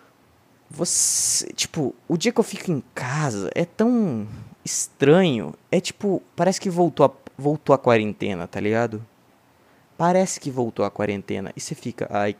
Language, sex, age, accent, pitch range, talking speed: Portuguese, male, 20-39, Brazilian, 105-145 Hz, 150 wpm